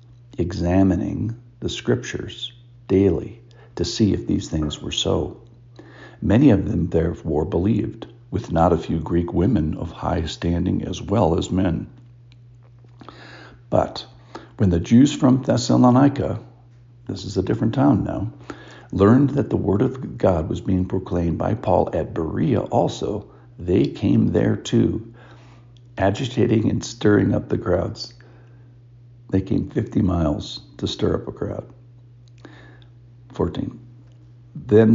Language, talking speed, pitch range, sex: English, 130 wpm, 85-120 Hz, male